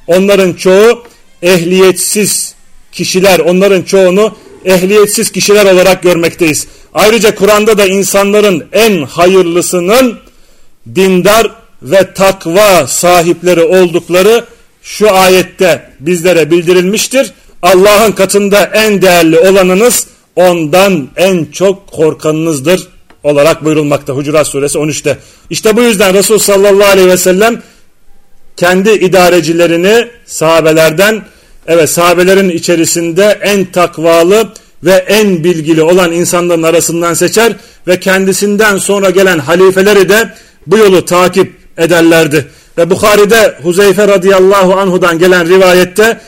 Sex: male